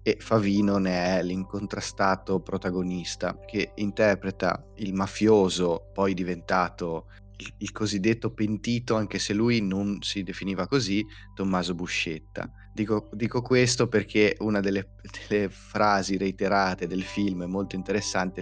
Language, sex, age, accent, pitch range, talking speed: Italian, male, 20-39, native, 95-105 Hz, 125 wpm